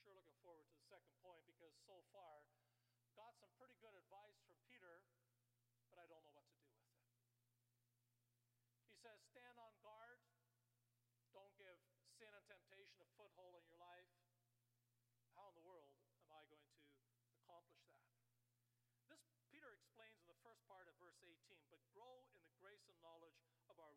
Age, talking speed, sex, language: 40-59, 160 wpm, male, English